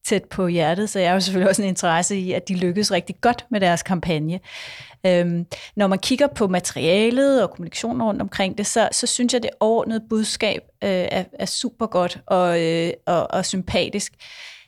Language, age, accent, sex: Danish, 30-49, native, female